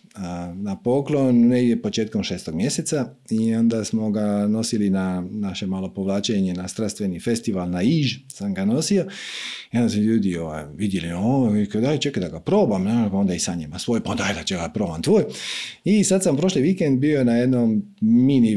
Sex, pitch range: male, 105-150 Hz